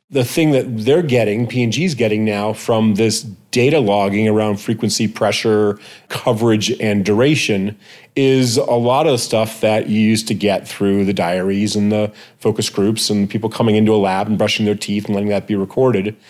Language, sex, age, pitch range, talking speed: English, male, 30-49, 105-120 Hz, 190 wpm